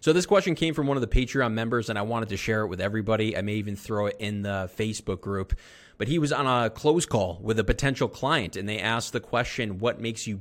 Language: English